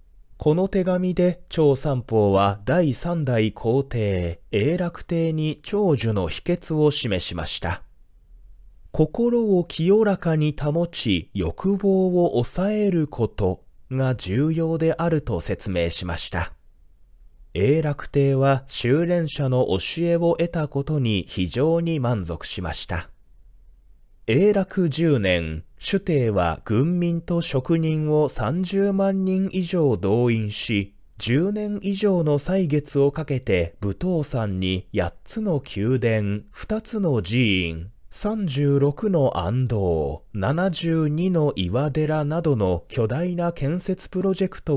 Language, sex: Japanese, male